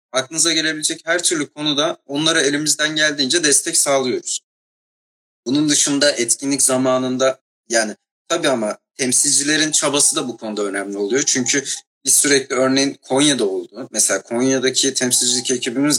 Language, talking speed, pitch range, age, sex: Turkish, 130 wpm, 115-180 Hz, 40-59, male